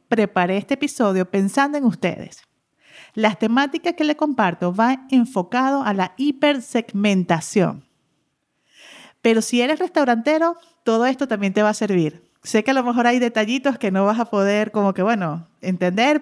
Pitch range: 200-270 Hz